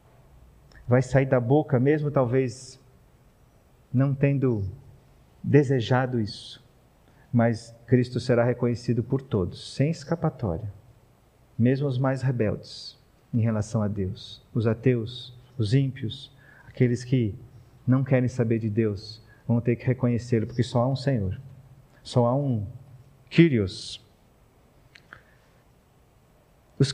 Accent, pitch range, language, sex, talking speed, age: Brazilian, 110-130 Hz, Portuguese, male, 115 wpm, 40-59